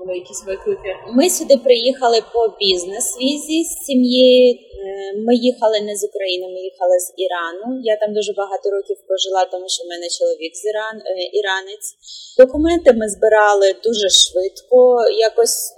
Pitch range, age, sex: 185-260 Hz, 20-39, female